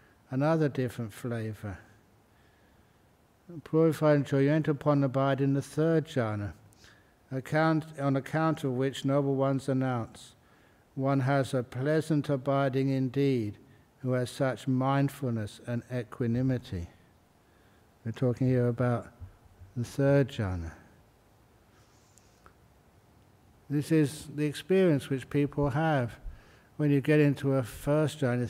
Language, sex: English, male